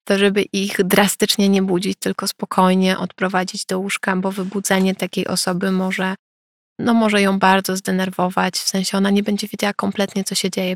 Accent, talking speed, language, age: native, 175 wpm, Polish, 20-39